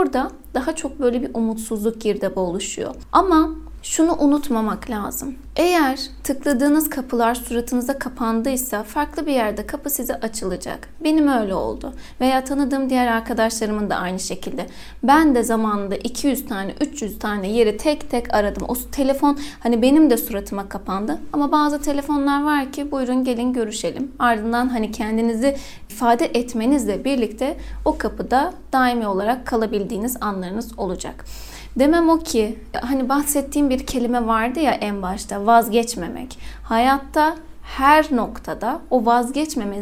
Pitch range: 225-290 Hz